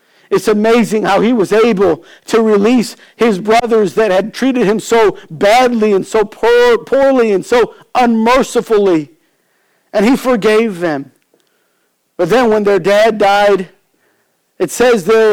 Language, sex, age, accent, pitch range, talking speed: English, male, 50-69, American, 195-245 Hz, 135 wpm